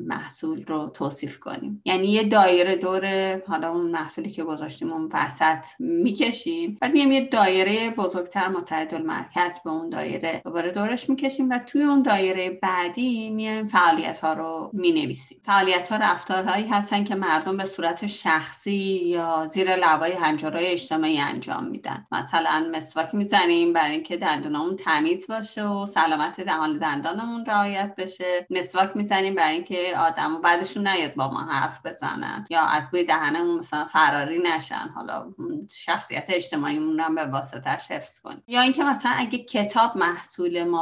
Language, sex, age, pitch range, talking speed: Persian, female, 30-49, 160-210 Hz, 150 wpm